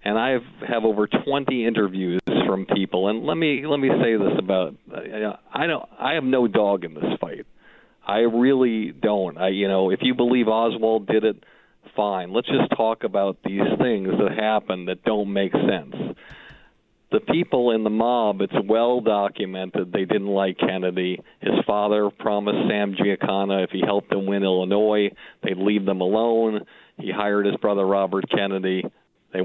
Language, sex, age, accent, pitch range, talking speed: English, male, 50-69, American, 95-110 Hz, 175 wpm